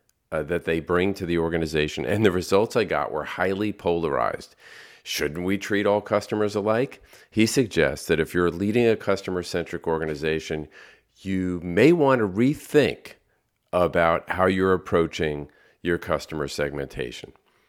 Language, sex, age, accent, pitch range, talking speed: English, male, 40-59, American, 80-100 Hz, 145 wpm